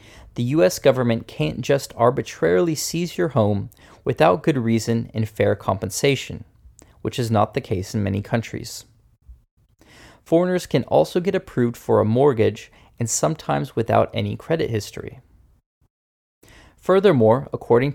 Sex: male